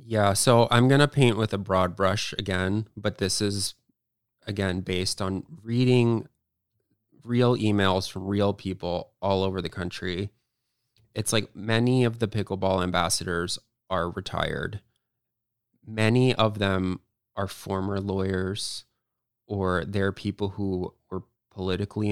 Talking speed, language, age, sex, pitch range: 130 wpm, English, 20-39, male, 95-110 Hz